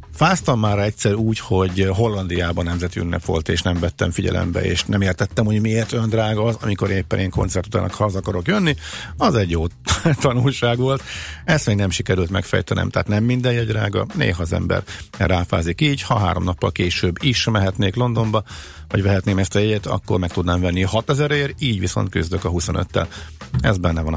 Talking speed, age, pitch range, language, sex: 180 wpm, 50-69, 90-110 Hz, Hungarian, male